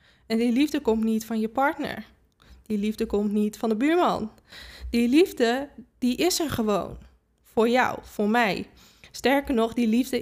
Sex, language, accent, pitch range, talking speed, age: female, Dutch, Dutch, 220-260 Hz, 170 wpm, 20-39